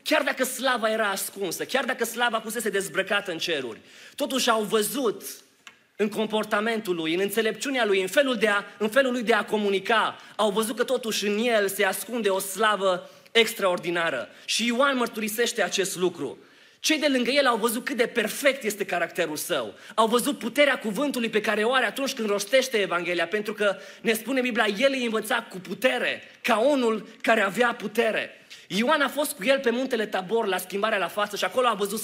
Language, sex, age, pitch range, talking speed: Romanian, male, 30-49, 205-255 Hz, 190 wpm